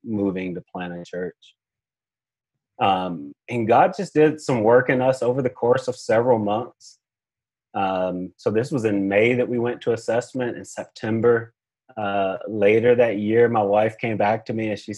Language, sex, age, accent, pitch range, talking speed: English, male, 30-49, American, 100-130 Hz, 180 wpm